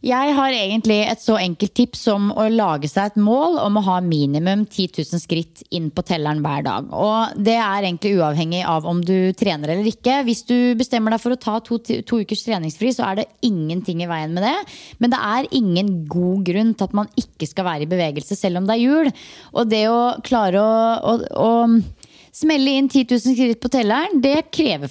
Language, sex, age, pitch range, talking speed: English, female, 20-39, 180-245 Hz, 215 wpm